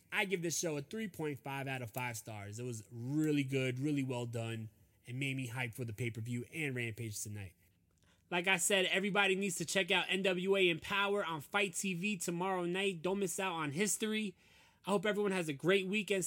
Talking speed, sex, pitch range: 200 wpm, male, 150-195 Hz